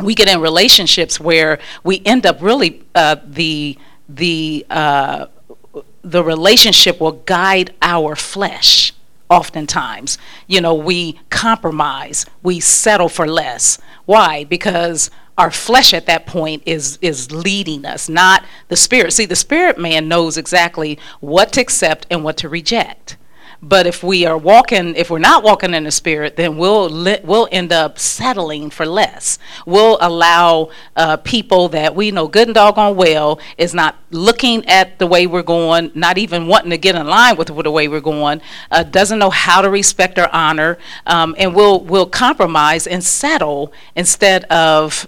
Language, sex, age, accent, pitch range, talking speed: English, female, 40-59, American, 160-195 Hz, 165 wpm